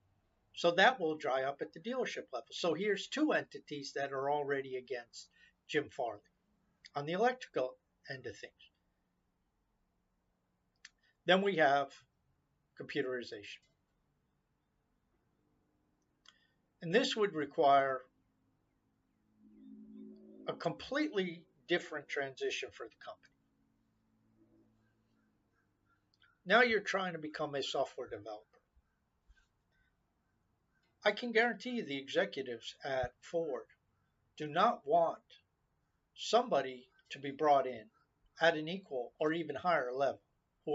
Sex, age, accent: male, 50-69, American